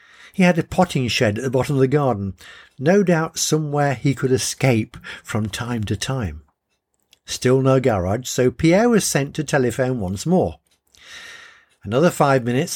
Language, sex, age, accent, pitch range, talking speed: English, male, 50-69, British, 105-150 Hz, 165 wpm